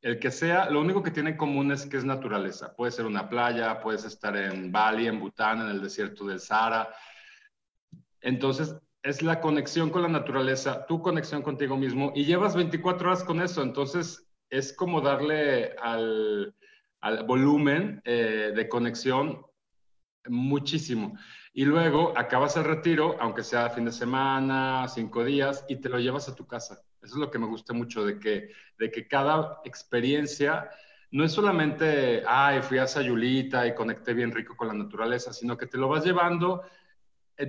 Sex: male